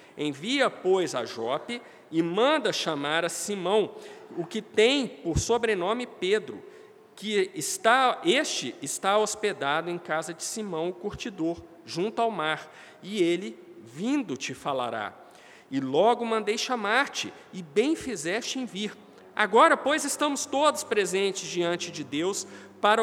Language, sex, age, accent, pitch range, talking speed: Portuguese, male, 50-69, Brazilian, 165-225 Hz, 135 wpm